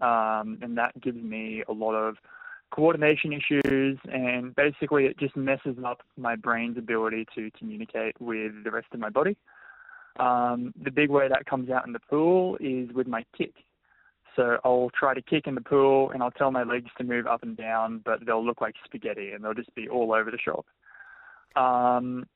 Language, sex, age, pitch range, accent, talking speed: English, male, 20-39, 115-135 Hz, Australian, 195 wpm